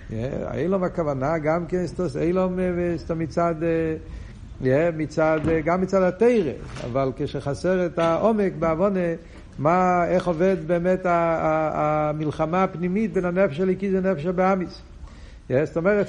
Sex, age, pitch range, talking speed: male, 60-79, 135-185 Hz, 110 wpm